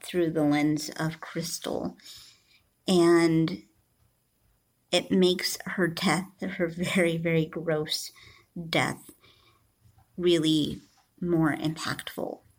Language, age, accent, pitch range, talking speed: English, 50-69, American, 160-190 Hz, 85 wpm